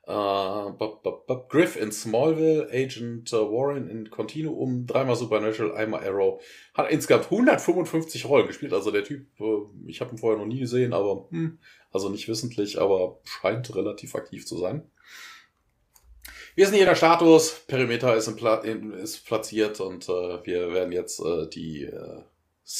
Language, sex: German, male